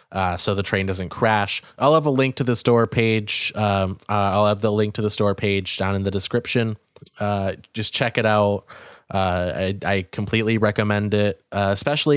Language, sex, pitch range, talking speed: English, male, 100-115 Hz, 200 wpm